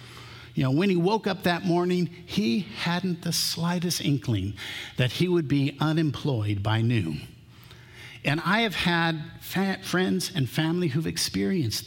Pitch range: 115-155 Hz